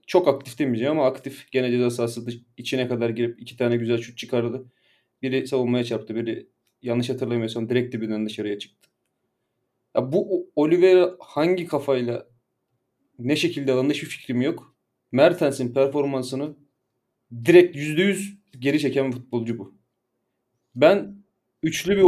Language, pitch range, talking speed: Turkish, 120-170 Hz, 130 wpm